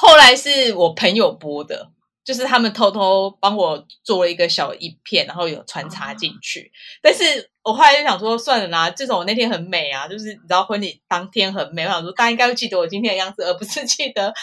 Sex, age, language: female, 20-39, Chinese